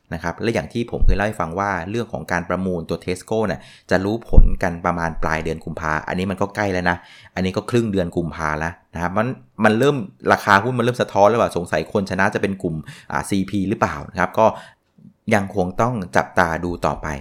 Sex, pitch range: male, 90-115 Hz